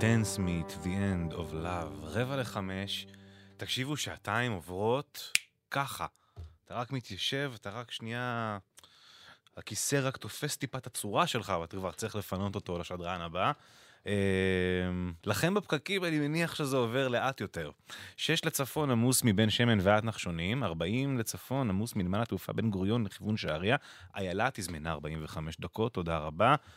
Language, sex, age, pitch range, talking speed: English, male, 20-39, 95-125 Hz, 75 wpm